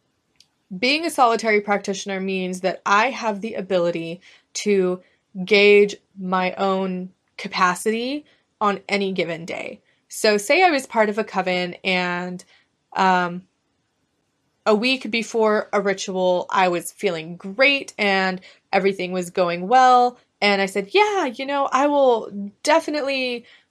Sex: female